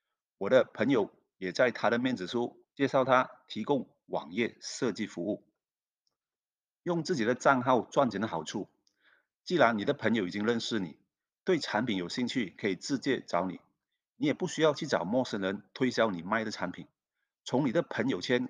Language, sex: Chinese, male